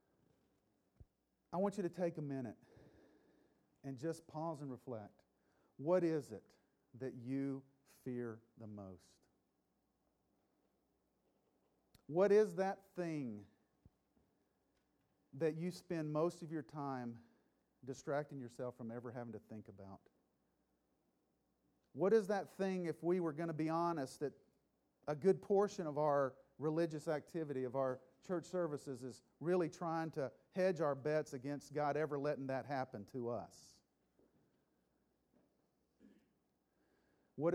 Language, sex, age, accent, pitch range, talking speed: English, male, 40-59, American, 120-160 Hz, 125 wpm